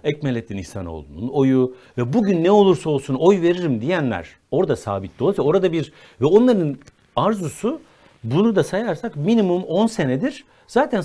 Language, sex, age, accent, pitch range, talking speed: Turkish, male, 60-79, native, 145-225 Hz, 140 wpm